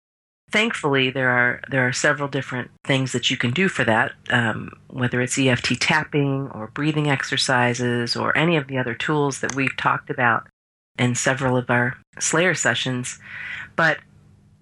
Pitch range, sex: 125-150 Hz, female